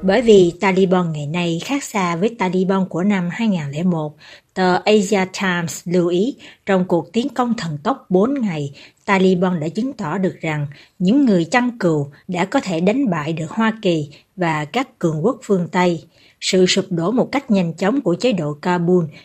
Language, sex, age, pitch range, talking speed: Vietnamese, female, 60-79, 170-215 Hz, 185 wpm